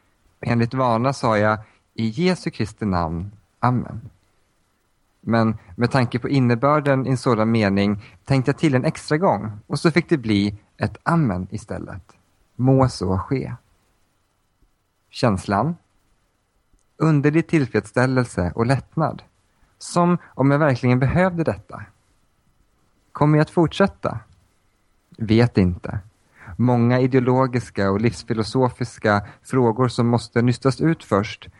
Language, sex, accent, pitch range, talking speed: Swedish, male, Norwegian, 100-135 Hz, 120 wpm